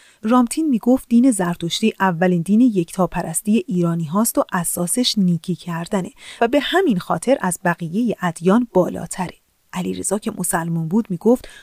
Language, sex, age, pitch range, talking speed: Persian, female, 30-49, 185-270 Hz, 135 wpm